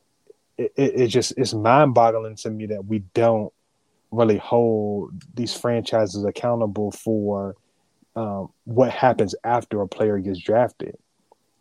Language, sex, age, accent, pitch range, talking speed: English, male, 20-39, American, 105-120 Hz, 125 wpm